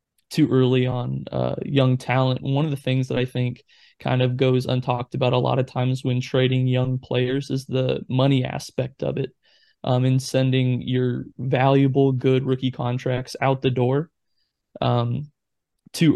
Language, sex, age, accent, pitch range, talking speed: English, male, 20-39, American, 125-135 Hz, 165 wpm